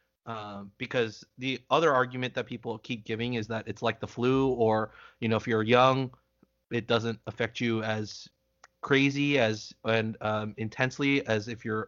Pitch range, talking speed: 110-135 Hz, 170 wpm